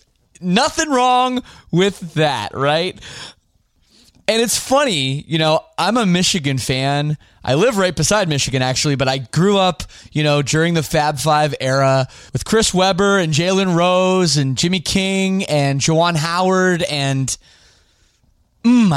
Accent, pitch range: American, 130-185 Hz